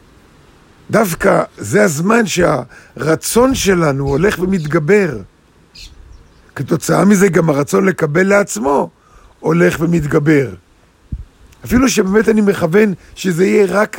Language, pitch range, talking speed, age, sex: Hebrew, 140-190 Hz, 95 wpm, 50-69, male